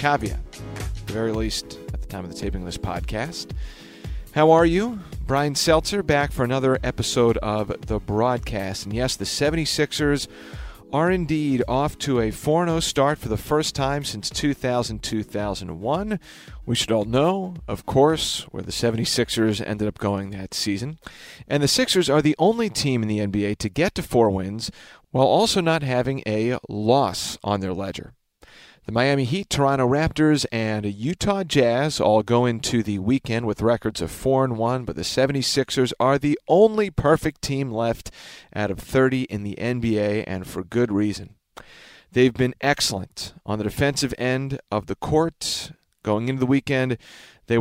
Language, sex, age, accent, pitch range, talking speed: English, male, 40-59, American, 105-145 Hz, 170 wpm